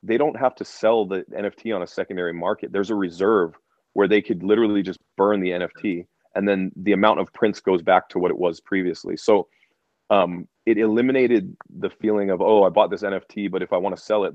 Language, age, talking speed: English, 30-49, 225 wpm